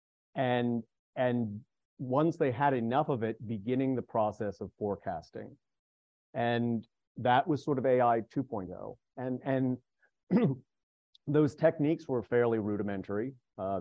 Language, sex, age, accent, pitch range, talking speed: English, male, 40-59, American, 100-125 Hz, 120 wpm